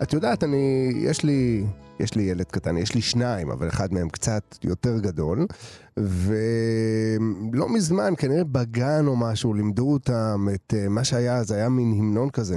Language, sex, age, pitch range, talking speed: Hebrew, male, 30-49, 115-180 Hz, 160 wpm